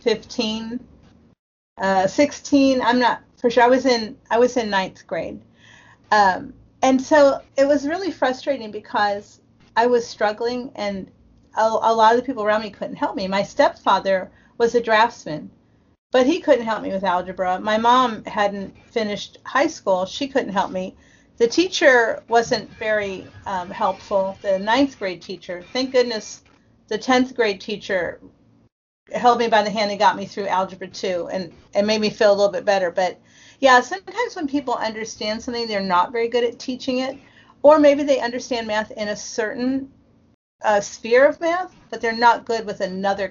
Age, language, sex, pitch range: 40-59, English, female, 200-255 Hz